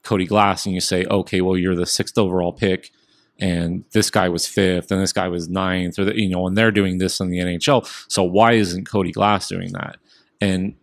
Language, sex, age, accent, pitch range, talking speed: English, male, 30-49, American, 90-110 Hz, 220 wpm